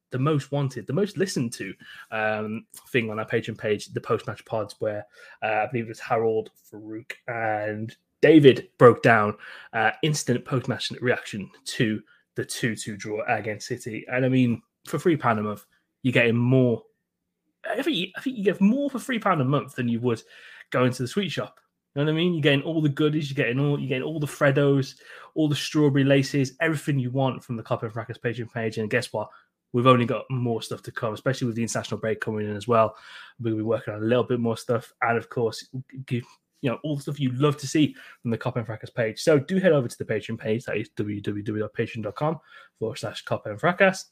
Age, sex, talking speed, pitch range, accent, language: 20-39, male, 225 wpm, 115-145 Hz, British, English